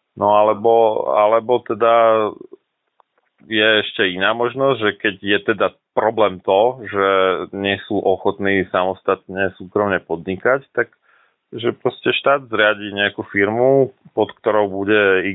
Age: 30-49